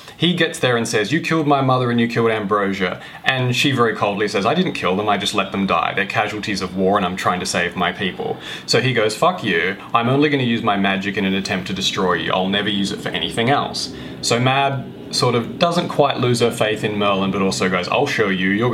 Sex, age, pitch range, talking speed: male, 20-39, 95-120 Hz, 260 wpm